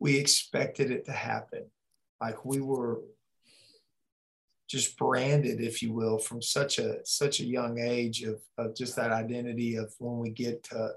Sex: male